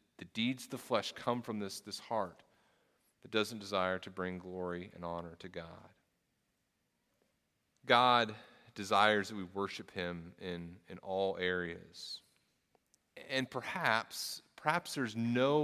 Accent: American